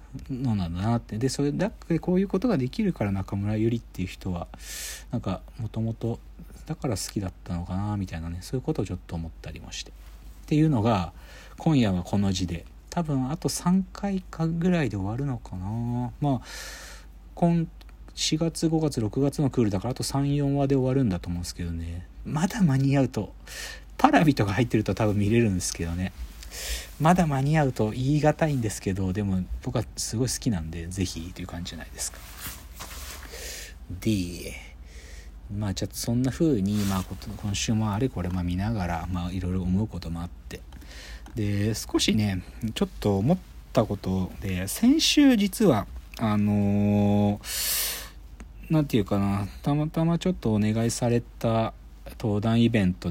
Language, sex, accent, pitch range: Japanese, male, native, 90-135 Hz